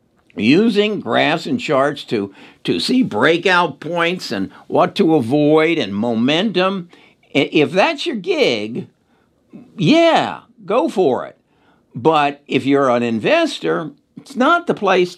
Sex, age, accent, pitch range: male, 60-79, American, 115-180 Hz